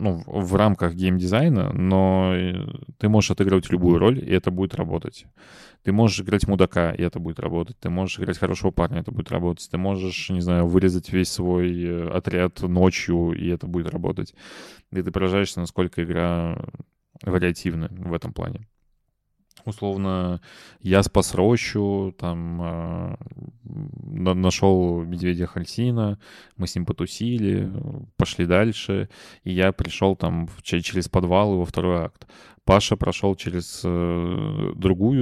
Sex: male